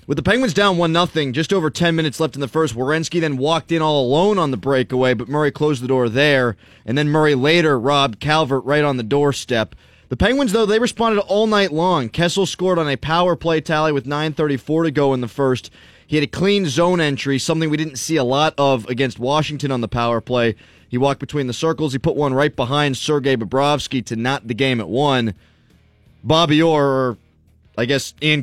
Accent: American